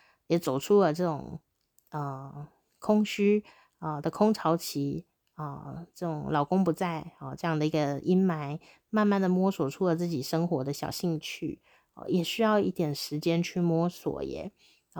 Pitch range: 155-195 Hz